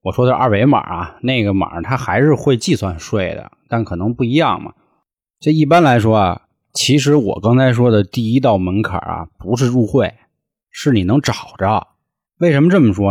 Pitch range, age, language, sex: 100-145 Hz, 20-39, Chinese, male